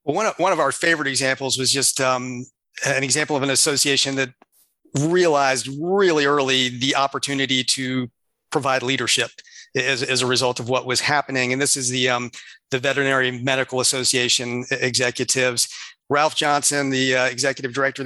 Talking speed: 155 wpm